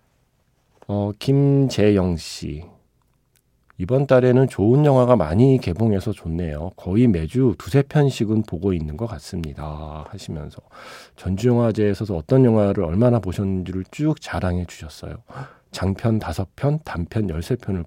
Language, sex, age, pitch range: Korean, male, 40-59, 90-125 Hz